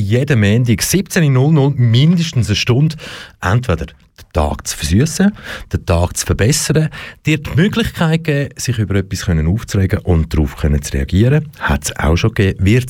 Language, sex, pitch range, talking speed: German, male, 90-145 Hz, 150 wpm